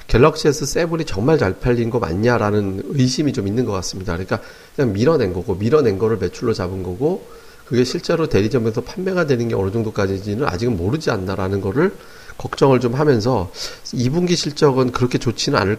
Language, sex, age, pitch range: Korean, male, 40-59, 100-140 Hz